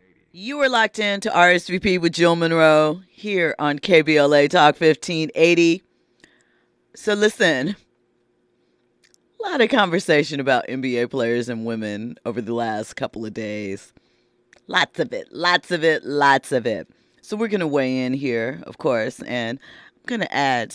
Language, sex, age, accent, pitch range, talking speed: English, female, 40-59, American, 135-205 Hz, 155 wpm